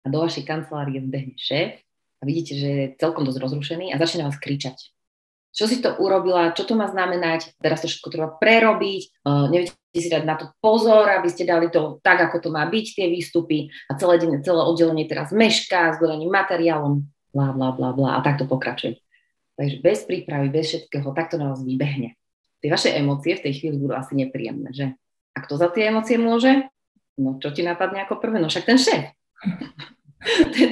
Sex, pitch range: female, 140-175 Hz